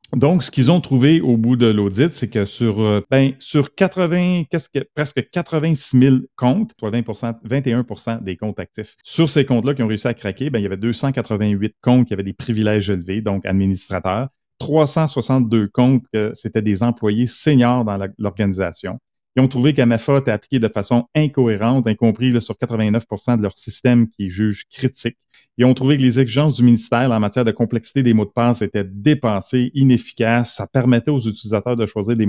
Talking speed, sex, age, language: 190 wpm, male, 30-49, French